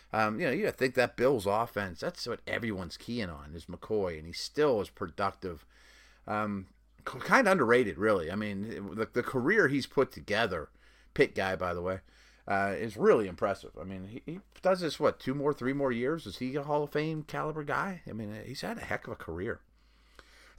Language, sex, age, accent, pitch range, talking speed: English, male, 30-49, American, 95-140 Hz, 210 wpm